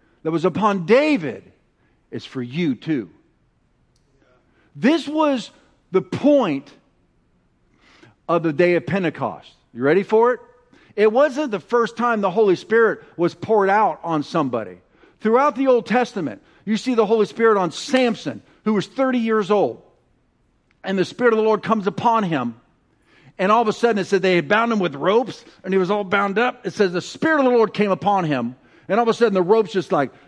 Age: 50-69